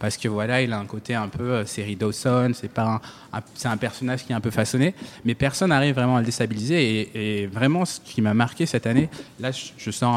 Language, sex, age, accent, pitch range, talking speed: French, male, 20-39, French, 110-140 Hz, 235 wpm